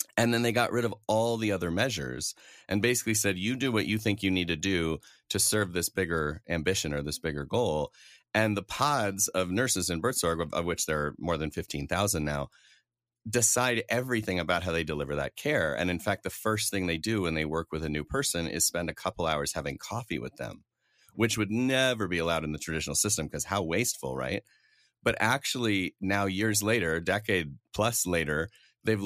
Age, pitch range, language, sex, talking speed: 30-49, 85-110 Hz, English, male, 205 wpm